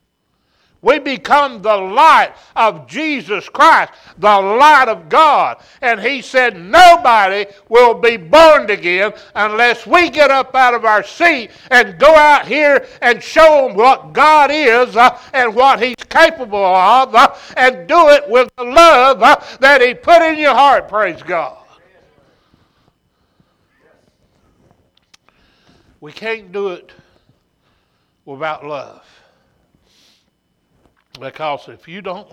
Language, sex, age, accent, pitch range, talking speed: English, male, 60-79, American, 170-260 Hz, 130 wpm